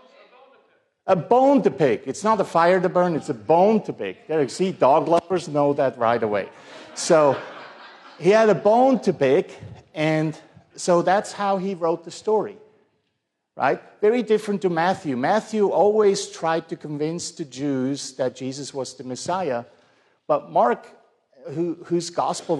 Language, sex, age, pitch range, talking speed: English, male, 50-69, 130-180 Hz, 155 wpm